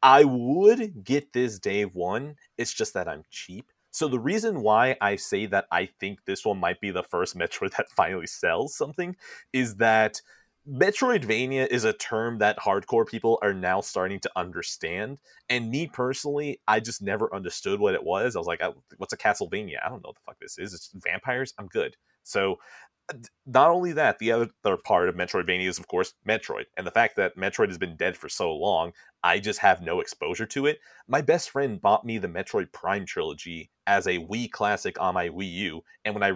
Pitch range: 100-145 Hz